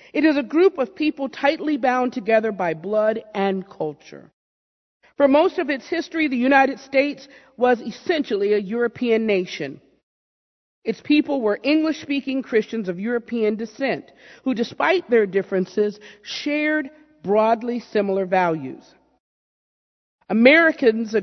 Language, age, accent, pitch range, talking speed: English, 50-69, American, 185-270 Hz, 120 wpm